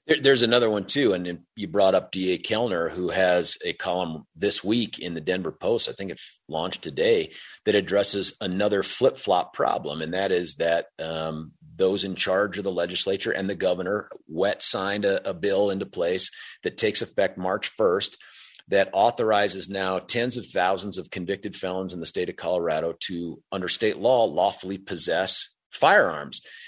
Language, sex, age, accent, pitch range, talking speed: English, male, 40-59, American, 95-160 Hz, 175 wpm